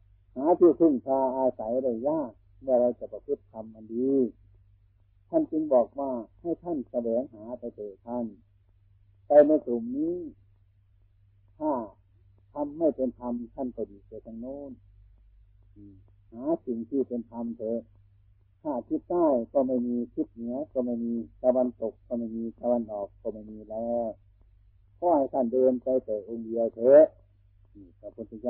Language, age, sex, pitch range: Thai, 60-79, male, 100-130 Hz